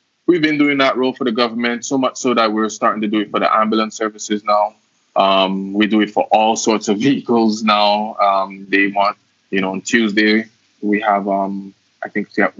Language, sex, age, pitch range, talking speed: English, male, 20-39, 105-120 Hz, 220 wpm